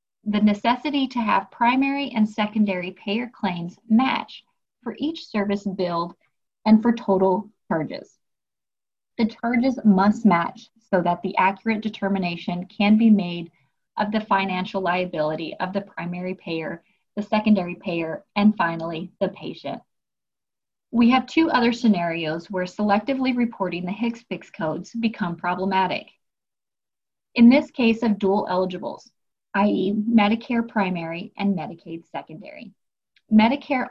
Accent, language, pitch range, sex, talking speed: American, English, 180-230 Hz, female, 125 wpm